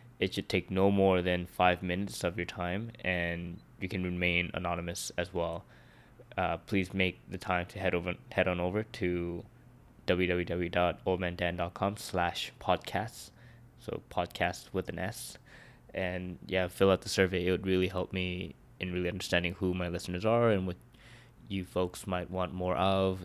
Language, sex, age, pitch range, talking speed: English, male, 20-39, 90-100 Hz, 165 wpm